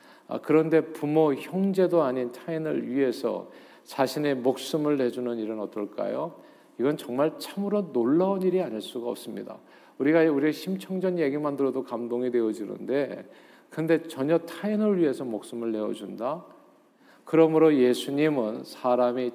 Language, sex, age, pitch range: Korean, male, 50-69, 120-155 Hz